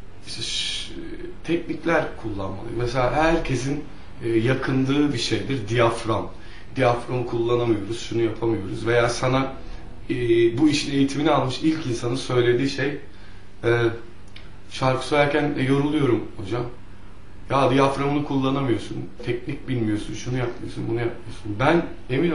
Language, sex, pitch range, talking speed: Turkish, male, 105-145 Hz, 100 wpm